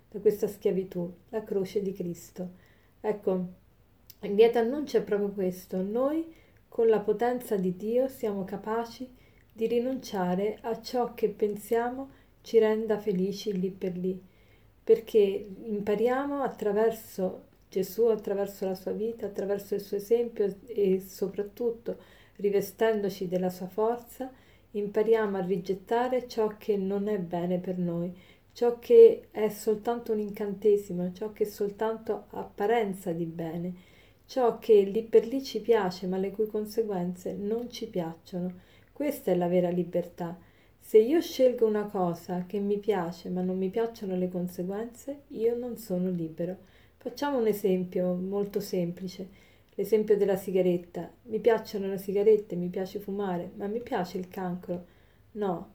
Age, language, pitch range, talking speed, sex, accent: 40-59, Italian, 185-225 Hz, 145 wpm, female, native